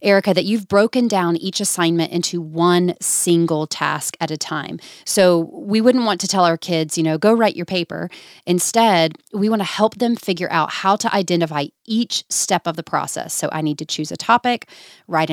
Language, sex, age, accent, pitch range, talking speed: English, female, 30-49, American, 160-200 Hz, 205 wpm